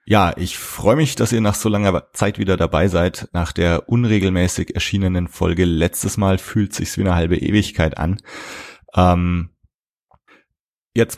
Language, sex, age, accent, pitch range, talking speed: German, male, 30-49, German, 85-105 Hz, 155 wpm